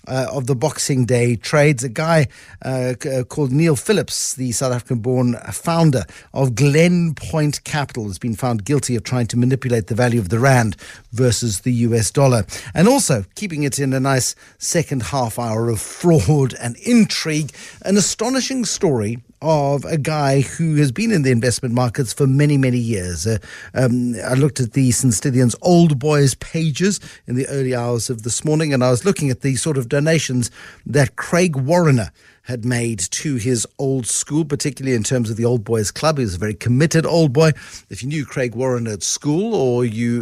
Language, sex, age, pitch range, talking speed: English, male, 50-69, 120-150 Hz, 190 wpm